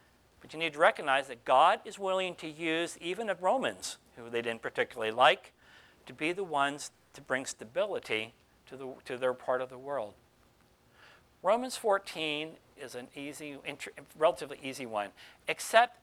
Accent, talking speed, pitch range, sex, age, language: American, 165 wpm, 140-200 Hz, male, 60-79, English